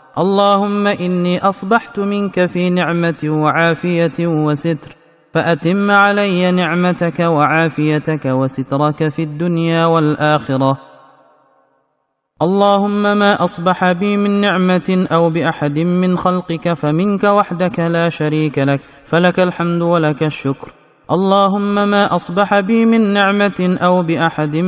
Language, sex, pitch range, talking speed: Indonesian, male, 155-195 Hz, 105 wpm